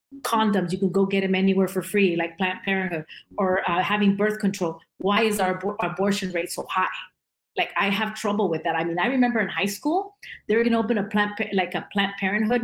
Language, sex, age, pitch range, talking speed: English, female, 30-49, 185-220 Hz, 235 wpm